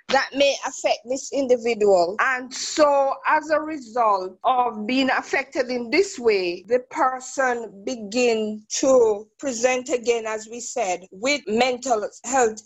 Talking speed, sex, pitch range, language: 135 wpm, female, 220-285 Hz, English